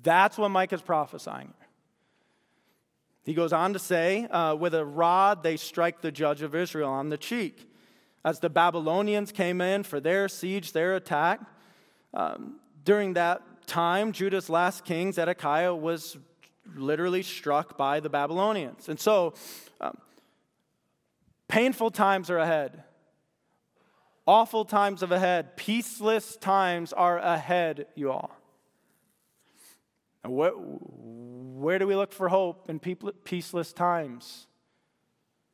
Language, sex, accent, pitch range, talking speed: English, male, American, 145-185 Hz, 125 wpm